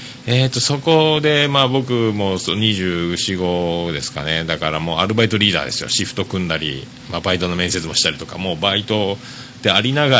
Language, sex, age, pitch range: Japanese, male, 40-59, 90-130 Hz